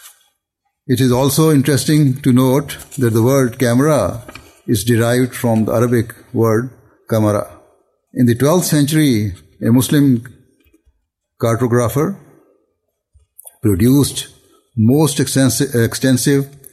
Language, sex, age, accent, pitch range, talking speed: English, male, 60-79, Indian, 115-135 Hz, 95 wpm